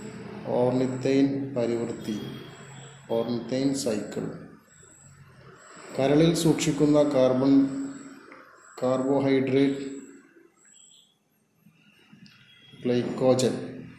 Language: Malayalam